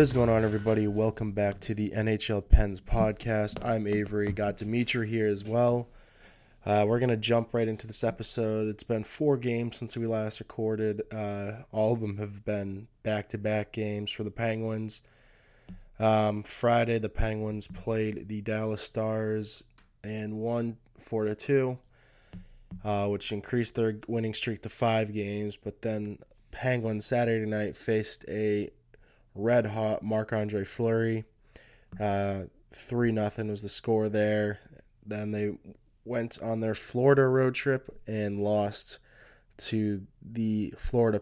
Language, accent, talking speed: English, American, 145 wpm